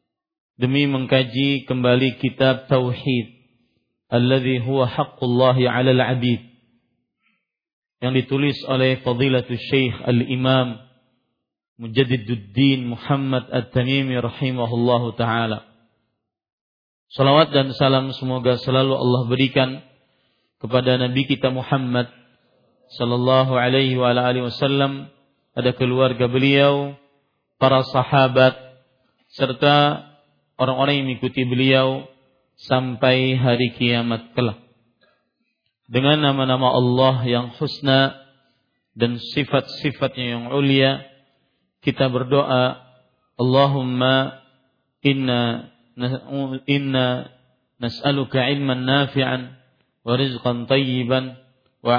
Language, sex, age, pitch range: Malay, male, 40-59, 125-135 Hz